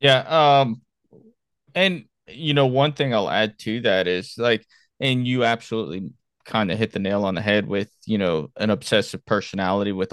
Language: English